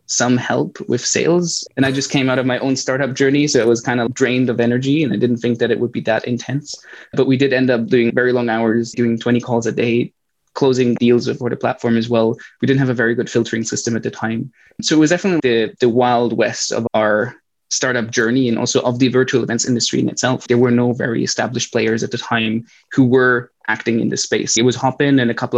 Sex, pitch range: male, 115-130 Hz